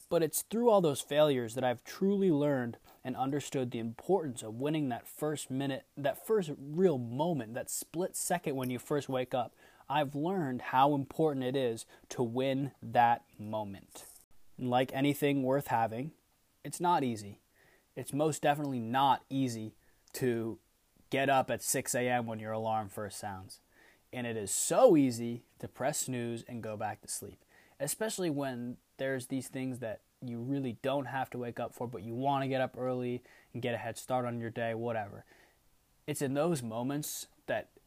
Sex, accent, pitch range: male, American, 115-140 Hz